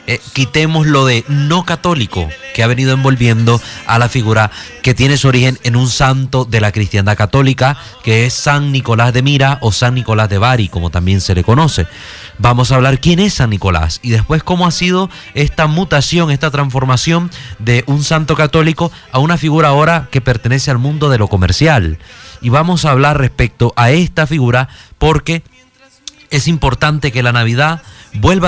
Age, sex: 30-49, male